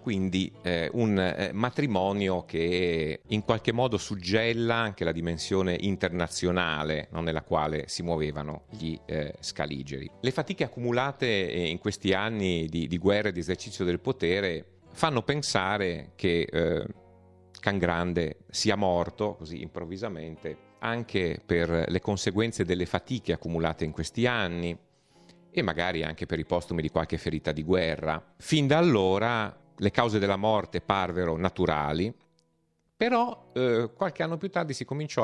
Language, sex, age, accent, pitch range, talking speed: Italian, male, 40-59, native, 80-105 Hz, 140 wpm